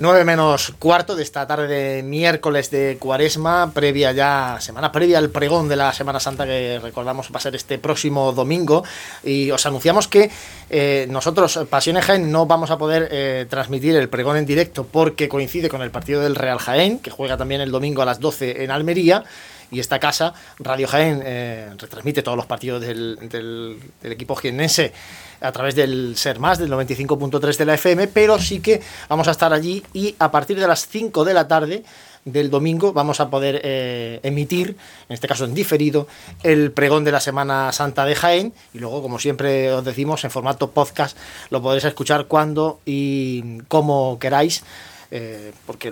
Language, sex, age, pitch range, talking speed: Spanish, male, 30-49, 135-165 Hz, 185 wpm